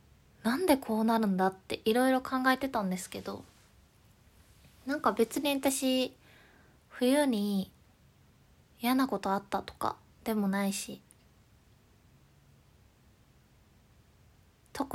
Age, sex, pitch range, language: 20-39, female, 200-255 Hz, Japanese